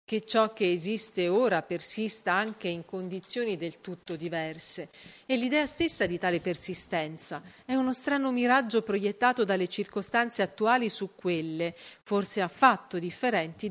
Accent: native